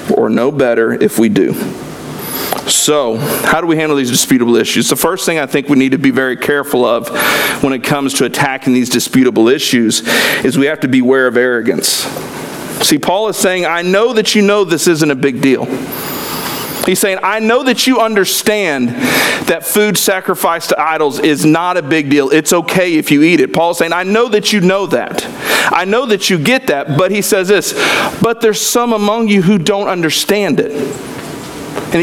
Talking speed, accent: 200 wpm, American